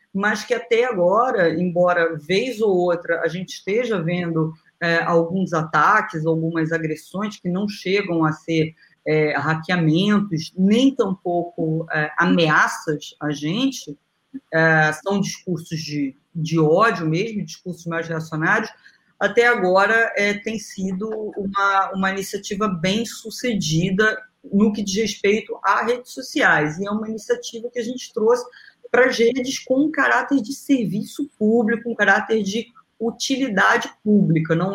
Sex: female